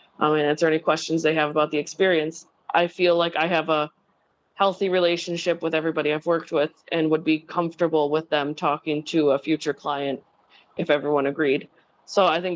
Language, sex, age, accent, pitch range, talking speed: English, female, 20-39, American, 155-175 Hz, 185 wpm